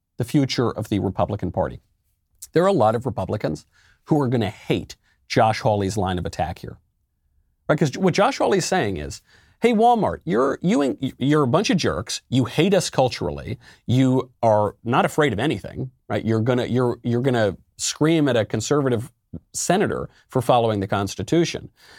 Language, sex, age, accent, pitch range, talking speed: English, male, 40-59, American, 105-155 Hz, 180 wpm